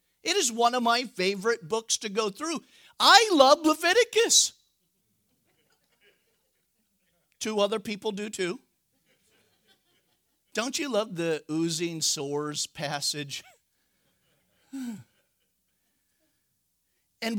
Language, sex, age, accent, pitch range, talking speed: English, male, 50-69, American, 165-230 Hz, 90 wpm